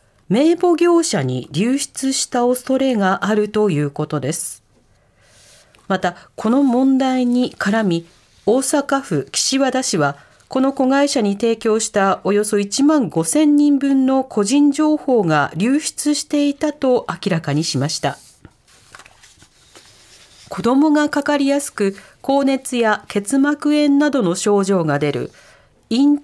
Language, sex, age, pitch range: Japanese, female, 40-59, 175-280 Hz